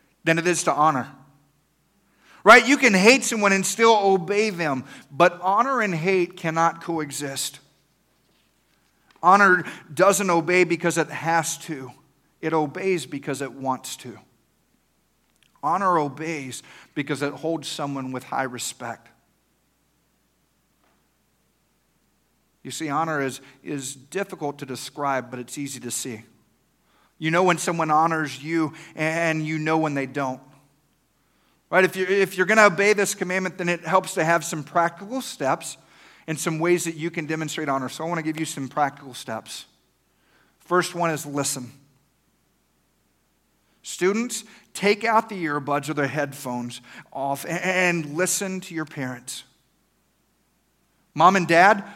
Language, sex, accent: English, male, American